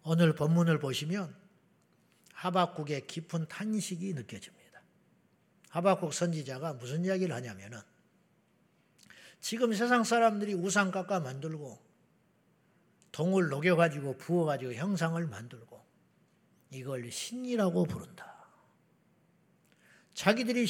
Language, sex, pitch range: Korean, male, 160-195 Hz